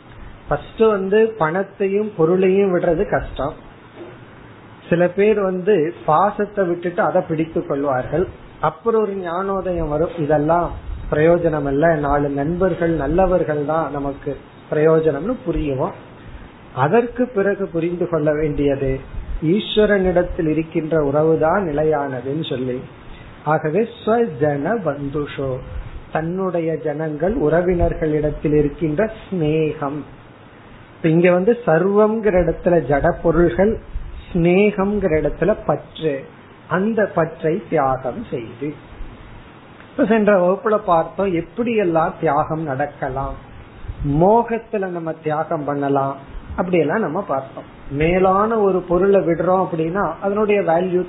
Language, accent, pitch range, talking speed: Tamil, native, 145-190 Hz, 85 wpm